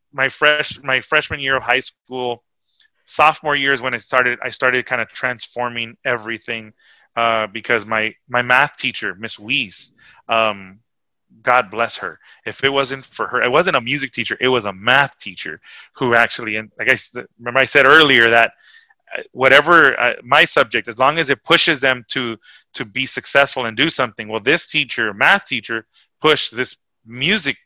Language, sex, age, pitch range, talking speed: English, male, 30-49, 115-135 Hz, 180 wpm